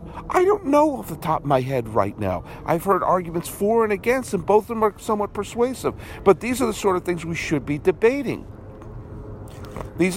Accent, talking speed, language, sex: American, 210 wpm, English, male